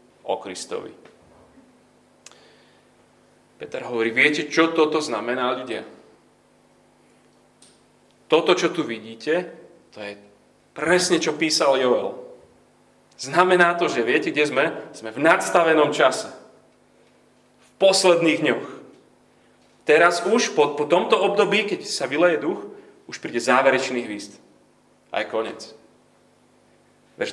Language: Slovak